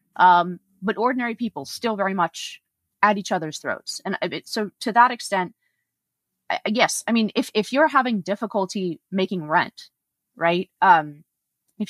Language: English